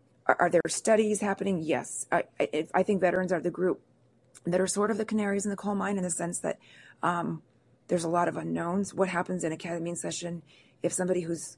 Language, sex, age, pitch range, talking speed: English, female, 40-59, 125-185 Hz, 220 wpm